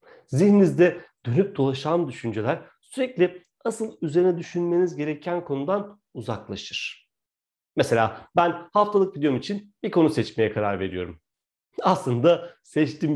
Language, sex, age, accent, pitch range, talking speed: Turkish, male, 40-59, native, 110-165 Hz, 105 wpm